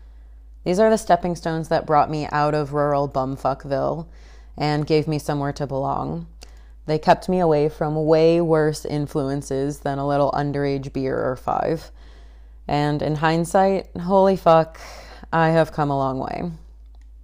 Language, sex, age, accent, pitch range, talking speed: English, female, 30-49, American, 135-165 Hz, 155 wpm